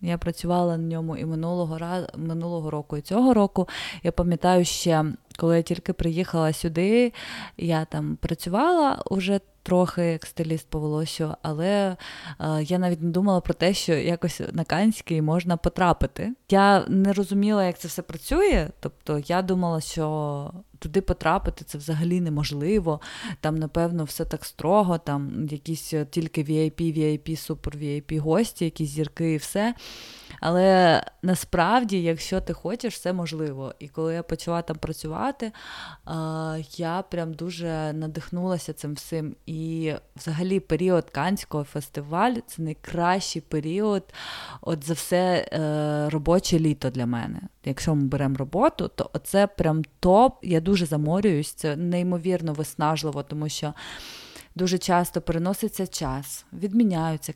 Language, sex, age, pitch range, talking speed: Ukrainian, female, 20-39, 155-180 Hz, 135 wpm